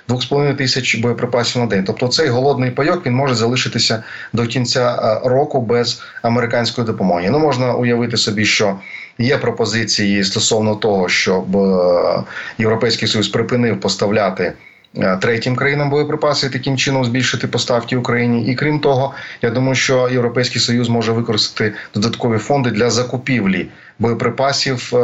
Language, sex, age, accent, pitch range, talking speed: Ukrainian, male, 30-49, native, 110-130 Hz, 135 wpm